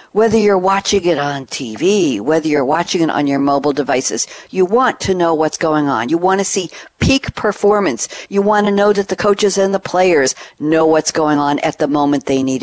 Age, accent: 60-79, American